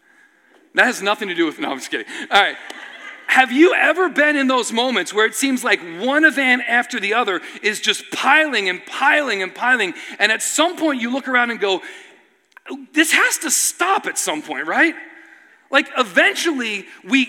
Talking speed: 190 wpm